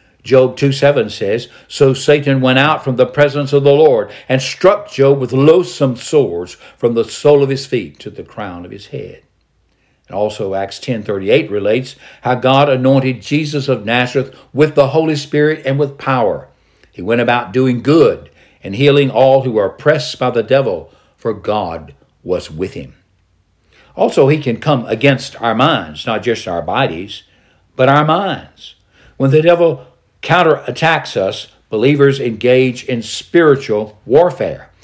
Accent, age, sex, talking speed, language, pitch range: American, 60-79, male, 160 wpm, English, 115-145 Hz